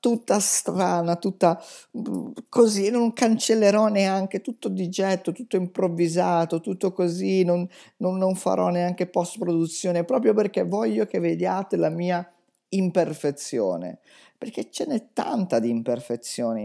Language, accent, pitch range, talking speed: Italian, native, 120-190 Hz, 125 wpm